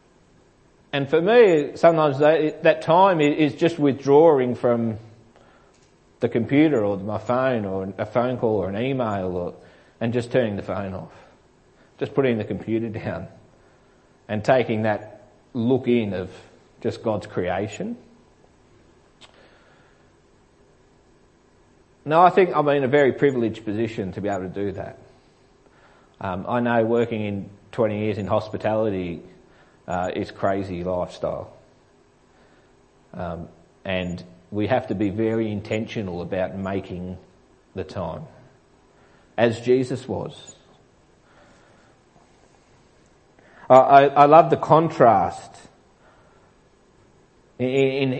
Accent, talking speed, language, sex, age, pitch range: Australian, 115 wpm, English, male, 30-49, 105-135 Hz